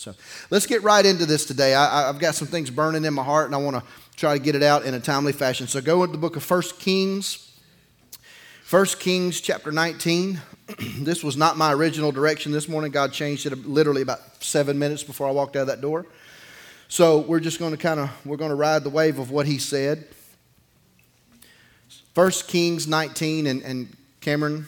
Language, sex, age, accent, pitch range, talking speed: English, male, 30-49, American, 130-160 Hz, 205 wpm